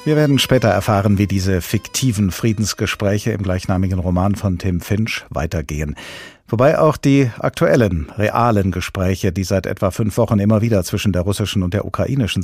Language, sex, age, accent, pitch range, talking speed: German, male, 50-69, German, 90-115 Hz, 165 wpm